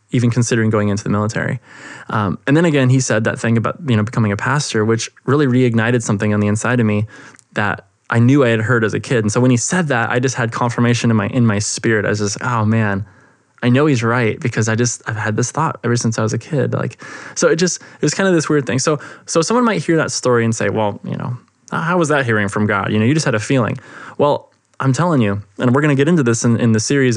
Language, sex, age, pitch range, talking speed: English, male, 20-39, 110-135 Hz, 280 wpm